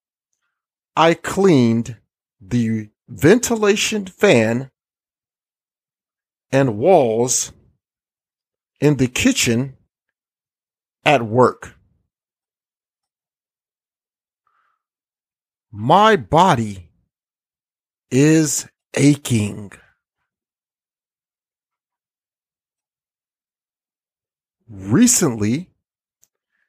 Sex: male